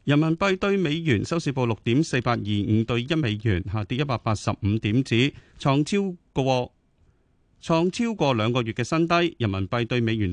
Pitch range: 110-150 Hz